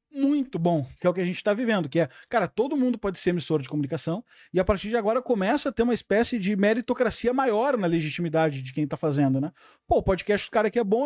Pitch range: 185-255 Hz